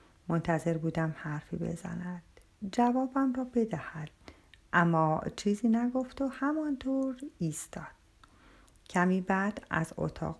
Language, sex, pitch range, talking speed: Persian, female, 170-240 Hz, 100 wpm